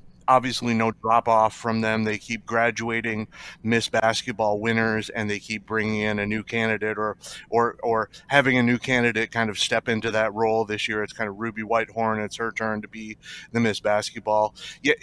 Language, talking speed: English, 195 wpm